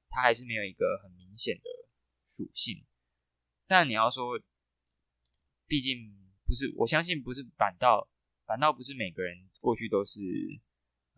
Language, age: Chinese, 20-39